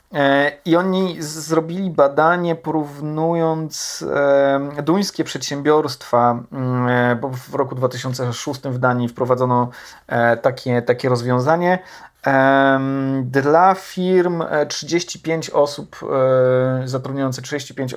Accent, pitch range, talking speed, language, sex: native, 130-160 Hz, 75 wpm, Polish, male